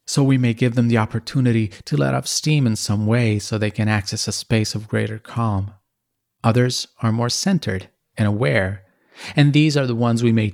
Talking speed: 205 wpm